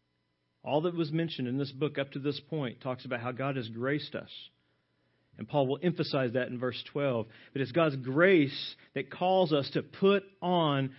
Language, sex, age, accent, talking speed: English, male, 40-59, American, 195 wpm